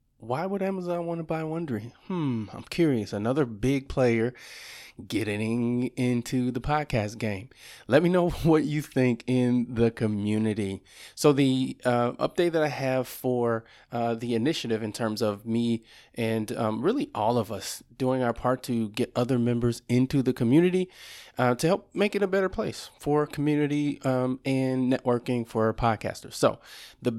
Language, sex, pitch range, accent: English, male, 110-130 Hz, American